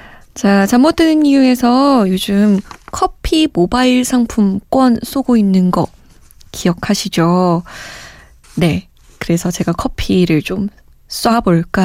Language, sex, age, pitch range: Korean, female, 20-39, 185-270 Hz